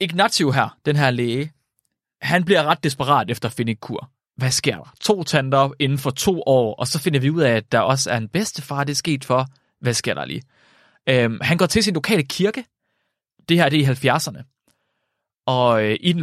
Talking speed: 220 wpm